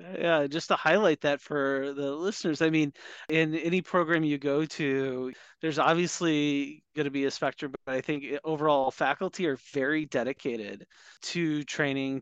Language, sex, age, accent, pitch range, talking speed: English, male, 30-49, American, 145-175 Hz, 160 wpm